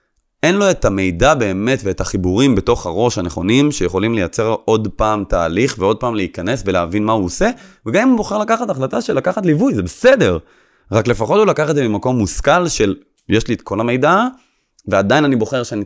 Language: Hebrew